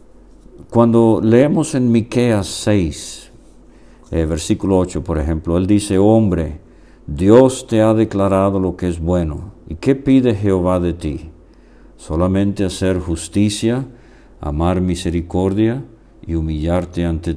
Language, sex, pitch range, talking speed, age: English, male, 80-110 Hz, 120 wpm, 50-69